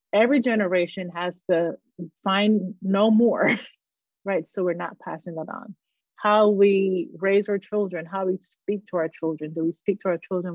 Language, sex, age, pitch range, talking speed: English, female, 30-49, 175-210 Hz, 175 wpm